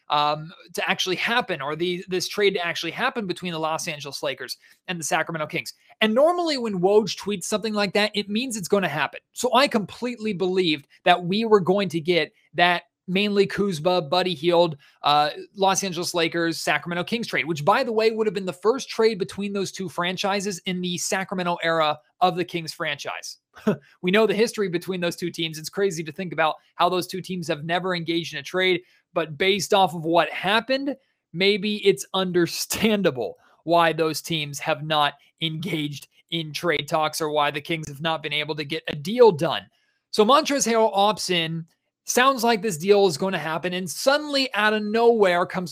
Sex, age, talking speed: male, 30-49, 200 wpm